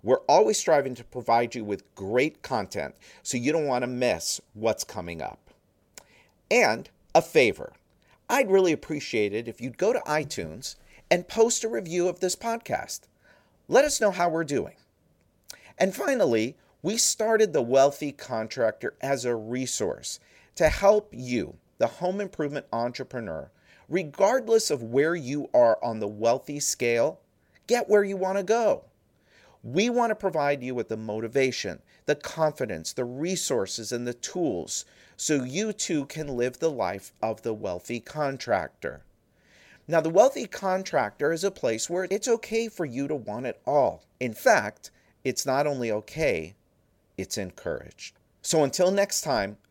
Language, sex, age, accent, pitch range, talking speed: English, male, 50-69, American, 115-190 Hz, 155 wpm